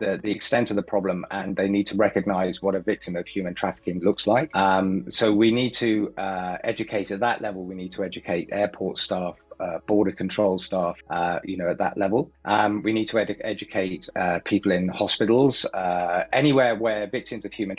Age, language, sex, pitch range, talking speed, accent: 30-49, English, male, 90-105 Hz, 205 wpm, British